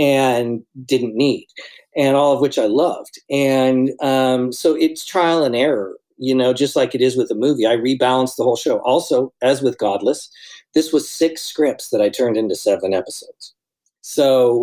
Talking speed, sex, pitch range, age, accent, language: 185 wpm, male, 120-145 Hz, 50-69, American, English